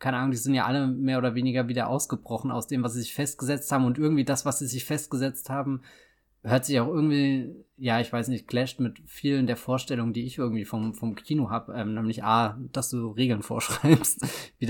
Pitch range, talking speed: 120-135 Hz, 220 wpm